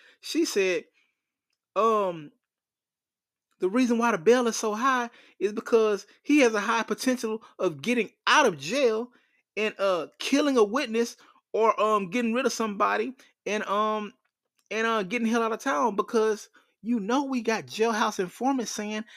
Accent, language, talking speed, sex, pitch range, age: American, English, 160 wpm, male, 185-260 Hz, 30-49